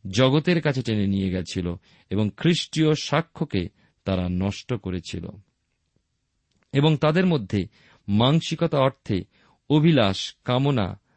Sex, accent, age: male, native, 50-69